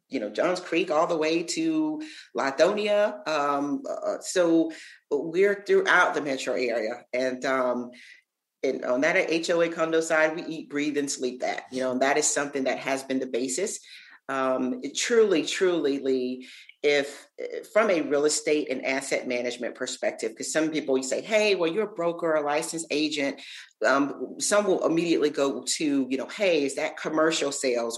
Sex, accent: female, American